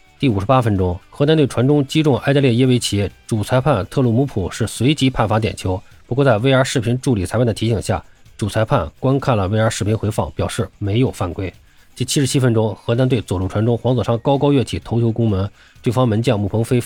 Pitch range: 100-130 Hz